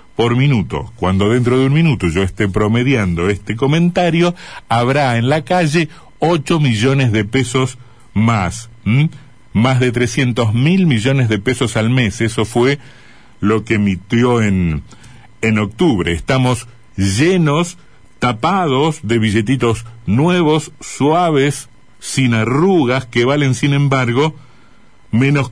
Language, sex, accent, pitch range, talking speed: Spanish, male, Argentinian, 110-145 Hz, 125 wpm